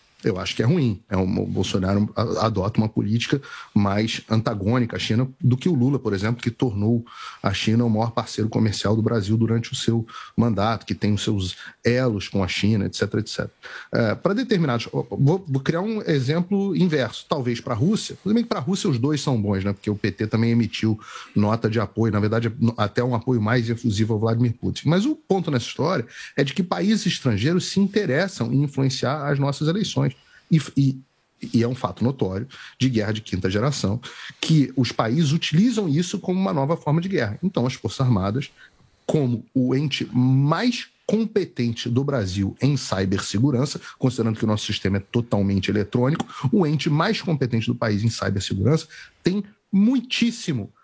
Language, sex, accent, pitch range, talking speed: Portuguese, male, Brazilian, 110-155 Hz, 185 wpm